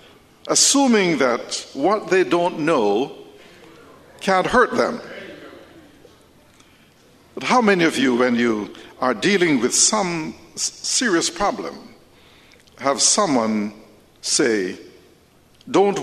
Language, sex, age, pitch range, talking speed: English, male, 60-79, 125-205 Hz, 95 wpm